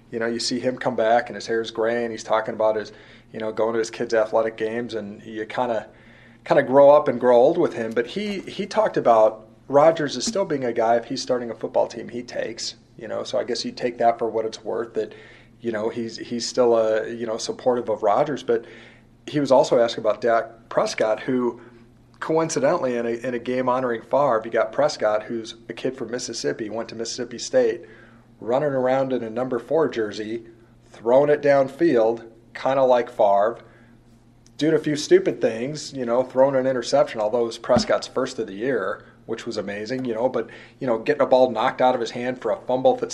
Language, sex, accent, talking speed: English, male, American, 225 wpm